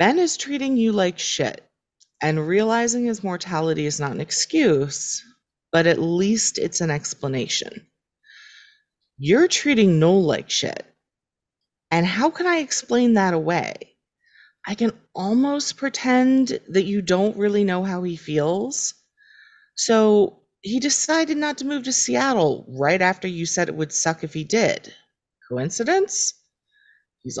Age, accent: 30-49, American